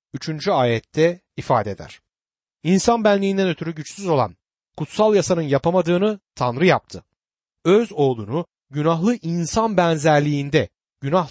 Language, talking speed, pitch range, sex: Turkish, 105 wpm, 130-195 Hz, male